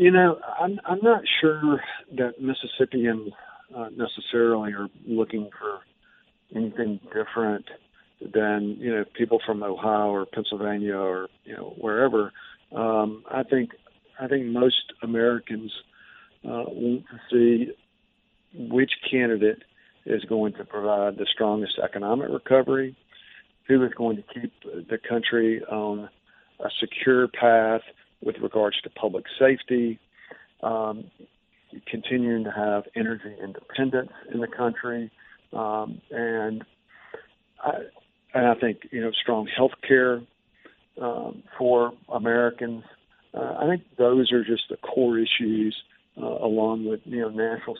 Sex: male